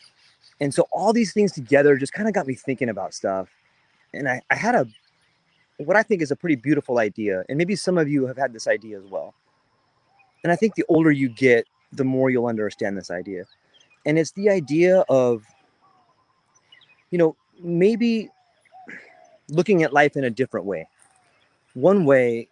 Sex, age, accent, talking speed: male, 30-49, American, 180 wpm